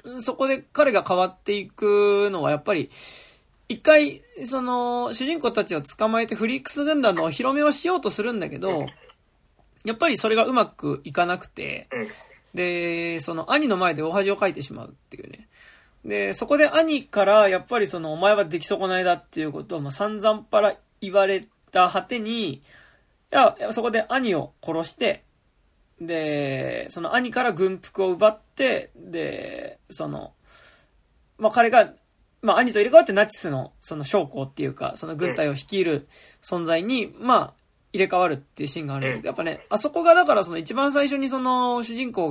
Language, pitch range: Japanese, 175-255 Hz